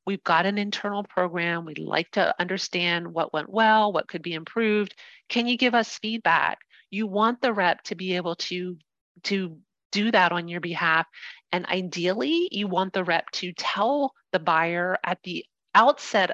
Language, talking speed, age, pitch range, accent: English, 175 wpm, 40-59, 175-220 Hz, American